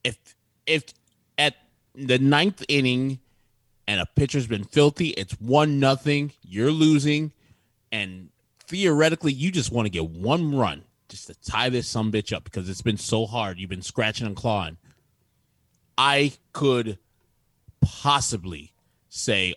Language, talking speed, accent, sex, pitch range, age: English, 140 wpm, American, male, 105-140 Hz, 30-49